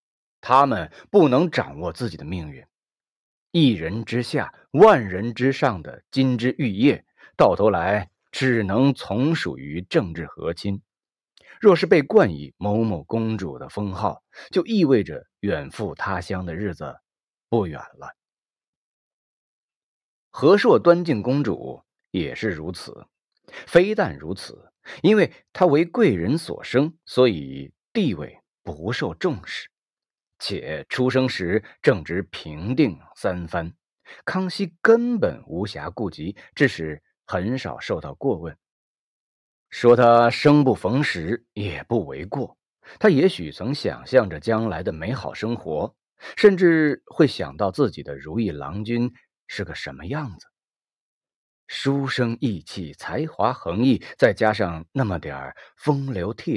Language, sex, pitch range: Chinese, male, 95-140 Hz